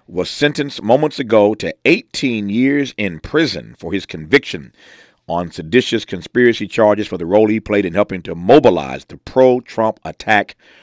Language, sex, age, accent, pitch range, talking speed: English, male, 50-69, American, 80-110 Hz, 155 wpm